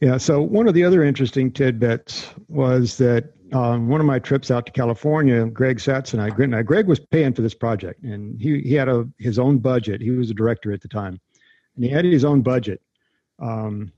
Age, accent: 50-69, American